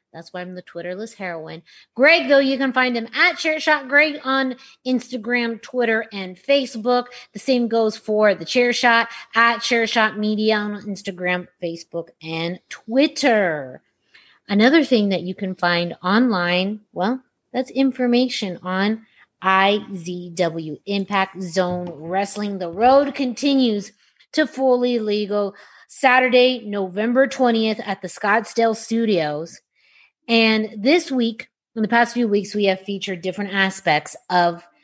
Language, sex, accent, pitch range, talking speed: English, female, American, 185-255 Hz, 130 wpm